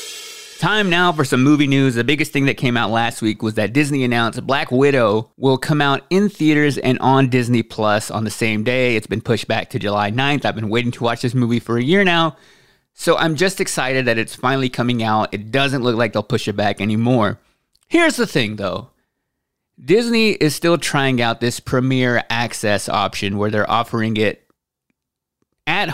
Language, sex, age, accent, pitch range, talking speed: English, male, 20-39, American, 115-150 Hz, 200 wpm